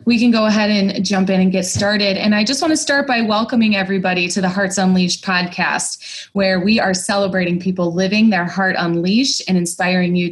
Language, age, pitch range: English, 20-39, 190-225 Hz